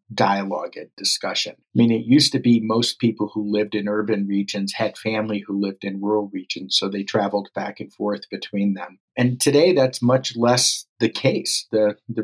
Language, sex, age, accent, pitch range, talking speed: English, male, 50-69, American, 100-120 Hz, 195 wpm